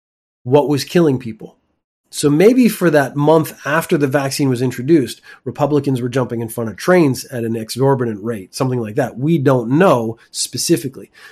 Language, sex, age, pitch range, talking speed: English, male, 30-49, 120-155 Hz, 170 wpm